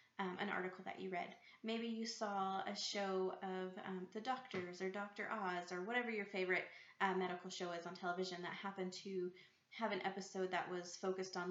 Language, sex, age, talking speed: English, female, 20-39, 200 wpm